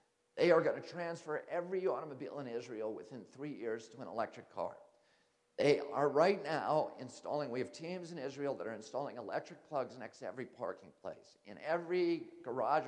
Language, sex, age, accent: English, male, 50-69, American